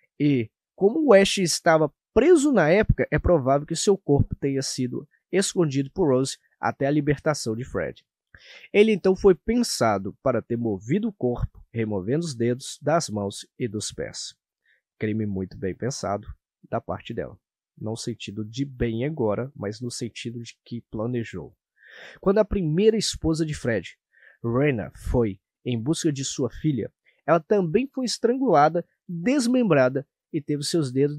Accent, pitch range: Brazilian, 120-165 Hz